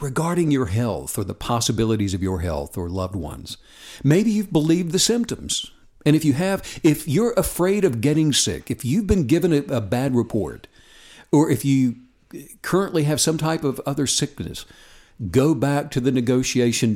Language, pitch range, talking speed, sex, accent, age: English, 115-170 Hz, 175 wpm, male, American, 60-79